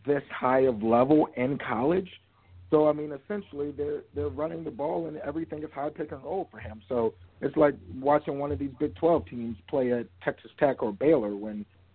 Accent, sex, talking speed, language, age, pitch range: American, male, 205 wpm, English, 50-69, 100-145 Hz